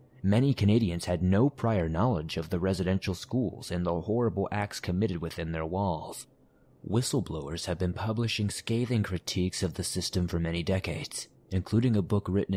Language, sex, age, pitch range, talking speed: English, male, 30-49, 90-110 Hz, 160 wpm